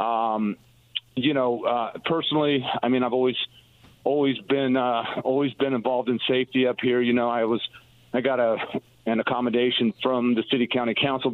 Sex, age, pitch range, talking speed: male, 40-59, 115-135 Hz, 175 wpm